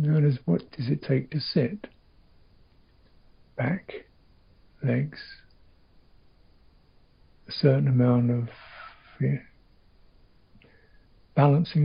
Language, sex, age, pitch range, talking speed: English, male, 60-79, 110-145 Hz, 80 wpm